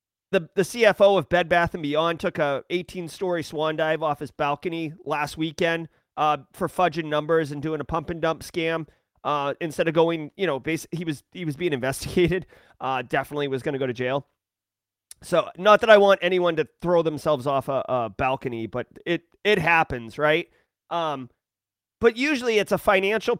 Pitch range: 145-205 Hz